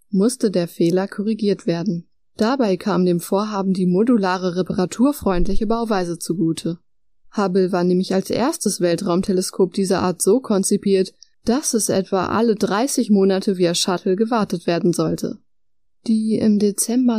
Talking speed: 135 wpm